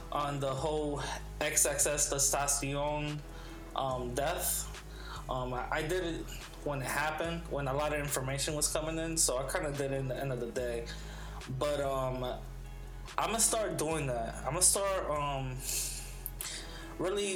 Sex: male